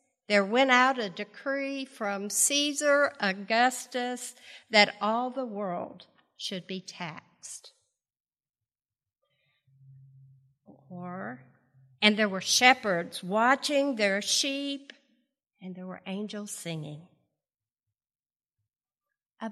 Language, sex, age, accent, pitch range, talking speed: English, female, 50-69, American, 200-265 Hz, 85 wpm